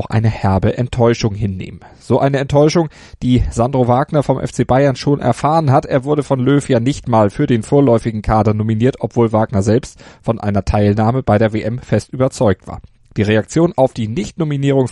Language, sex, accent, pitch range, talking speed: German, male, German, 110-135 Hz, 180 wpm